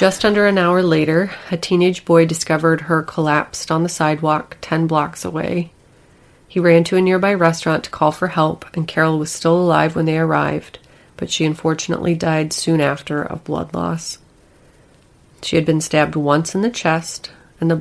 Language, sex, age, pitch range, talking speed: English, female, 30-49, 155-170 Hz, 180 wpm